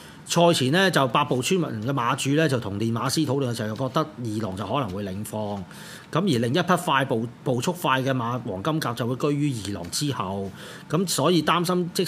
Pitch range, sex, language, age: 120-170 Hz, male, Chinese, 30-49